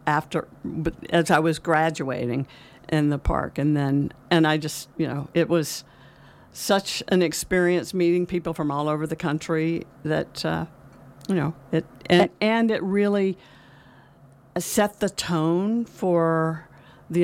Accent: American